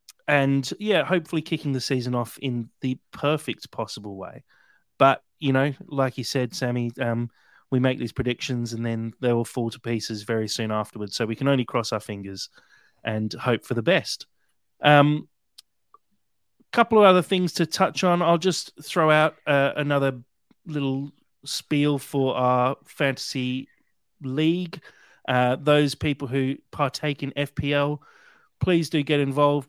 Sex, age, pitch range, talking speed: male, 30-49, 115-145 Hz, 155 wpm